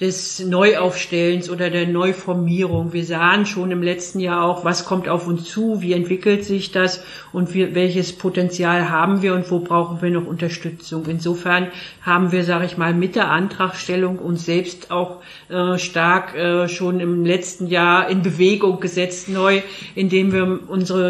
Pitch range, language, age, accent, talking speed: 170-185 Hz, German, 50-69, German, 170 wpm